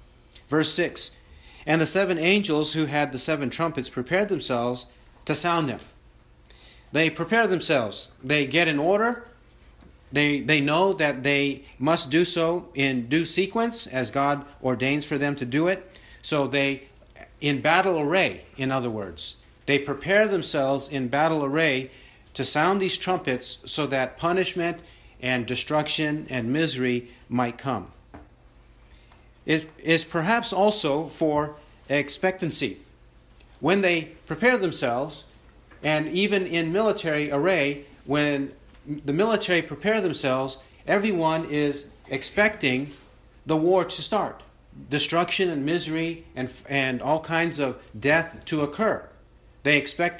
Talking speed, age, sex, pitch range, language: 130 wpm, 40-59, male, 130-165 Hz, English